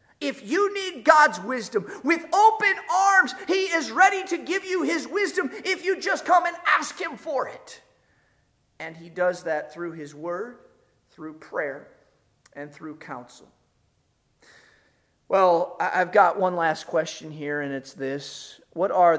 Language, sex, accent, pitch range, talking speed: English, male, American, 145-225 Hz, 155 wpm